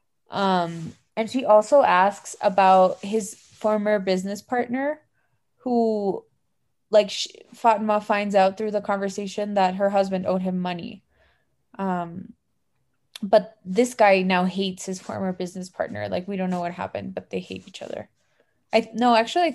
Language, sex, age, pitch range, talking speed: English, female, 20-39, 195-230 Hz, 155 wpm